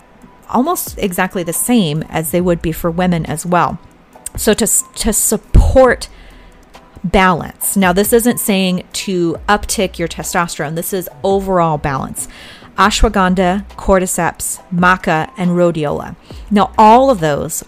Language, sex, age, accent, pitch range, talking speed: English, female, 30-49, American, 165-200 Hz, 130 wpm